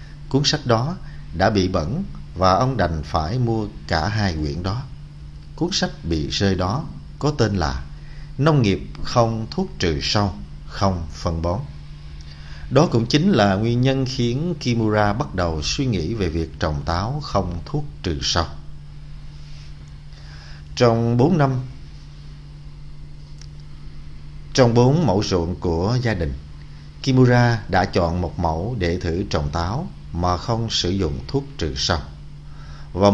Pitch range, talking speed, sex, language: 75-115 Hz, 145 wpm, male, Vietnamese